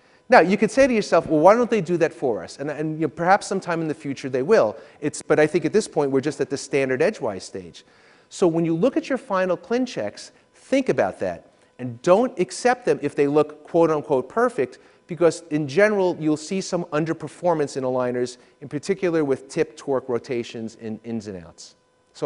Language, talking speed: English, 205 wpm